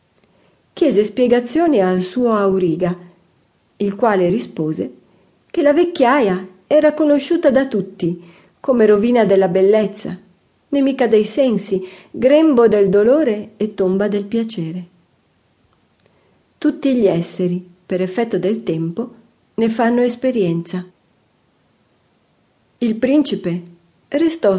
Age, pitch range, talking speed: 40-59, 185-245 Hz, 100 wpm